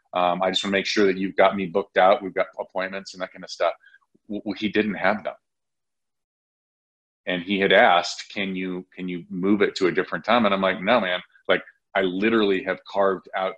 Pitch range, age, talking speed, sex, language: 90-110 Hz, 30-49, 225 wpm, male, English